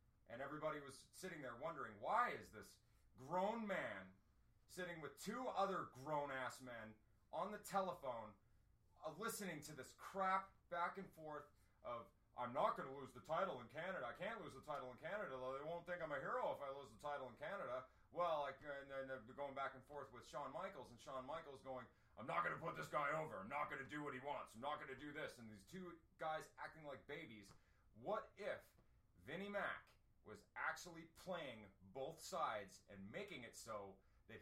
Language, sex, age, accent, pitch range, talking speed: English, male, 30-49, American, 110-155 Hz, 205 wpm